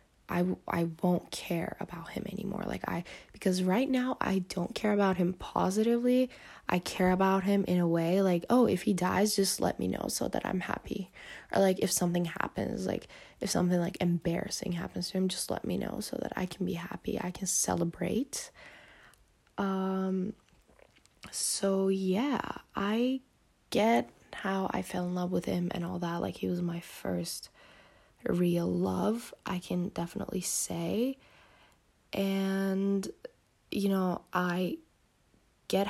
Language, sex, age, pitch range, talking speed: English, female, 10-29, 175-205 Hz, 160 wpm